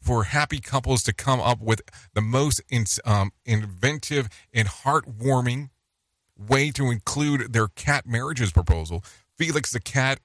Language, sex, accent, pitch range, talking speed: English, male, American, 90-120 Hz, 135 wpm